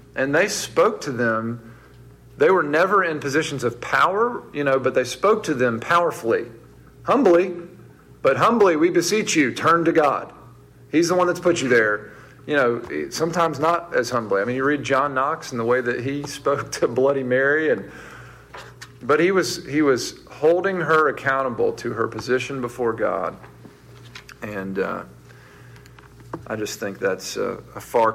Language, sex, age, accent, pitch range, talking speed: English, male, 40-59, American, 110-145 Hz, 170 wpm